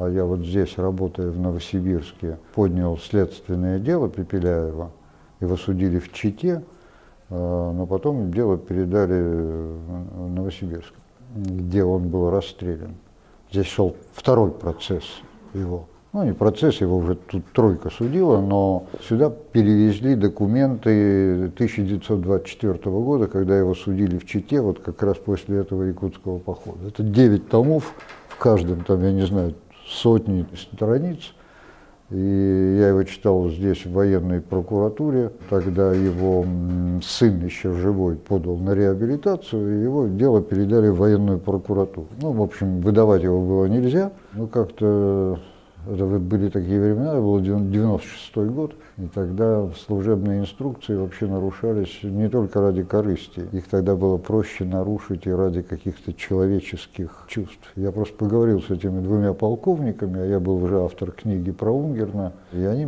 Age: 60-79